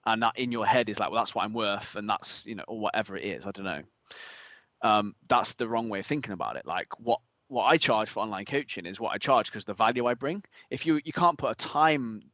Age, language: 20-39, English